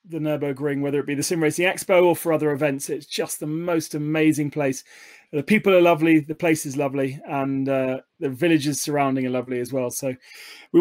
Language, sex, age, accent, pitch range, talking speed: English, male, 30-49, British, 145-185 Hz, 210 wpm